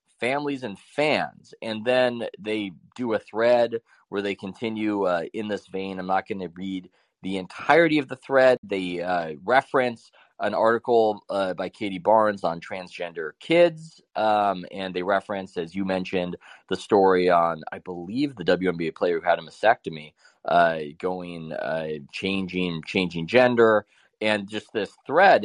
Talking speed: 160 wpm